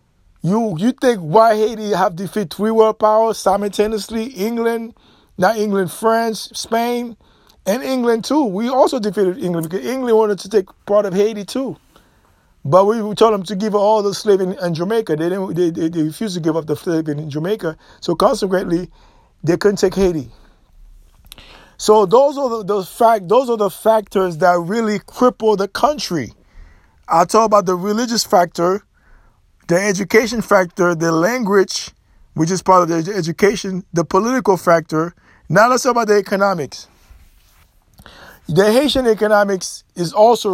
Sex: male